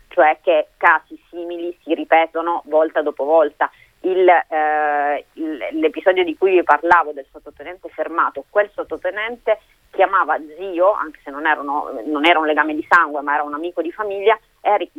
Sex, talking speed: female, 165 wpm